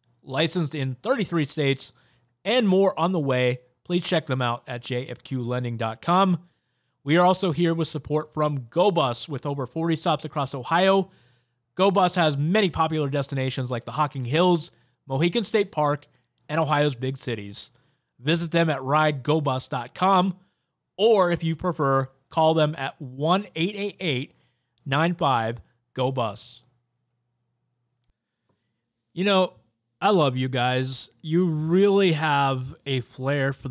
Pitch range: 120-160 Hz